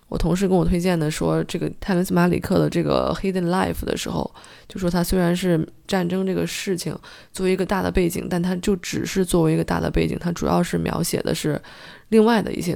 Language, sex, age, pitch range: Chinese, female, 20-39, 165-200 Hz